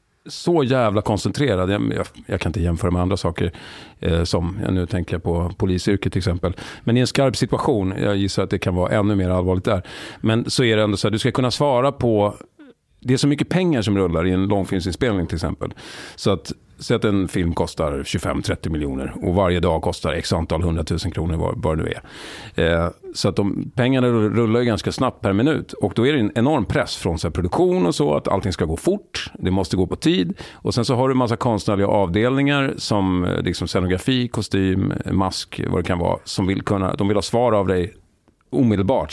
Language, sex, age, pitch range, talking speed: Swedish, male, 40-59, 90-120 Hz, 220 wpm